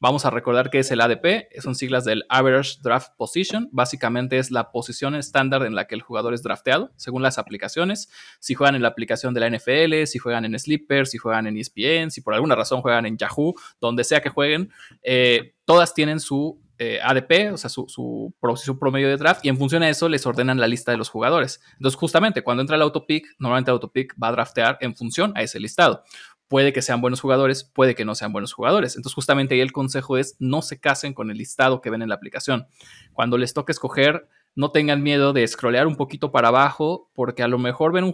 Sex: male